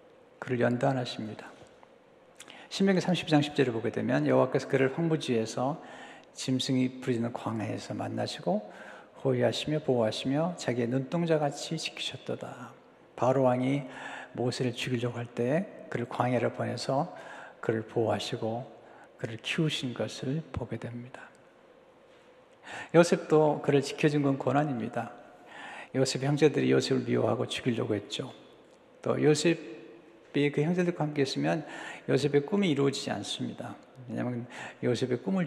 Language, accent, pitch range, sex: Korean, native, 120-155 Hz, male